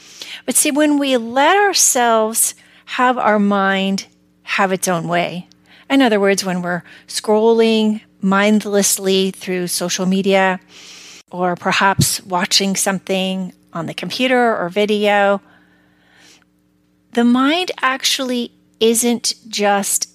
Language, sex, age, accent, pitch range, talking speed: English, female, 40-59, American, 180-245 Hz, 110 wpm